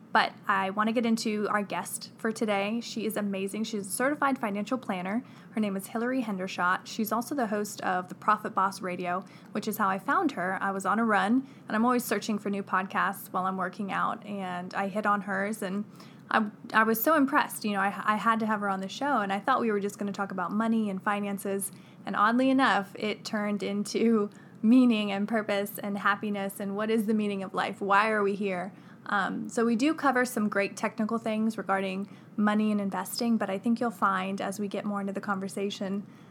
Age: 20-39